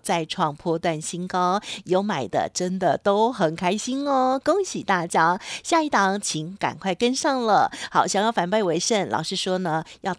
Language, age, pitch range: Chinese, 50-69, 180-250 Hz